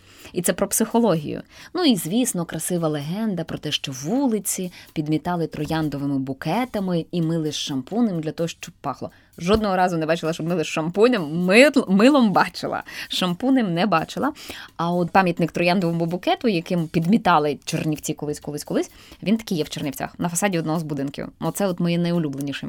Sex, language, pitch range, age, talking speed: female, Ukrainian, 150-185 Hz, 20-39, 160 wpm